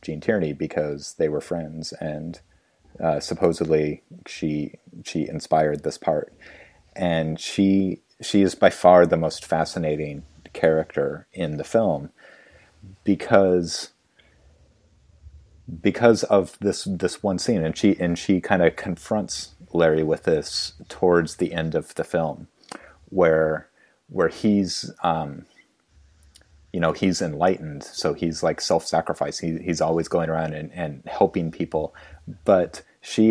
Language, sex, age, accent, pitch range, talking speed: English, male, 30-49, American, 75-85 Hz, 130 wpm